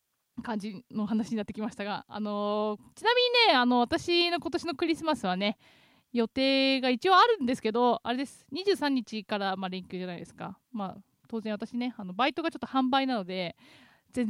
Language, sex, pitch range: Japanese, female, 200-260 Hz